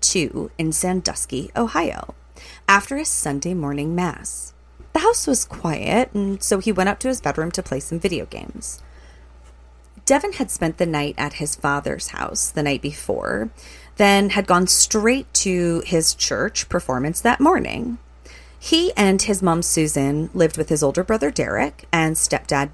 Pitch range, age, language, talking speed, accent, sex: 145-205 Hz, 30-49, English, 160 wpm, American, female